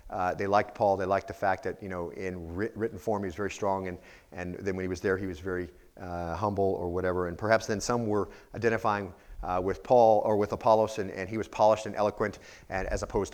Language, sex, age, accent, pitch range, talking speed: English, male, 40-59, American, 100-125 Hz, 250 wpm